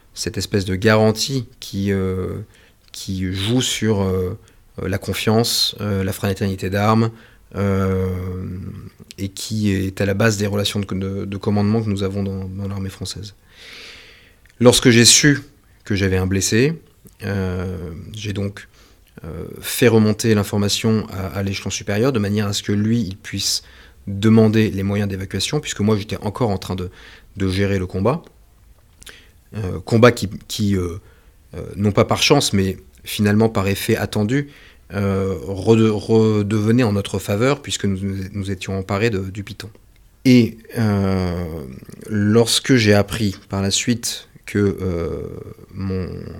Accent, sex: French, male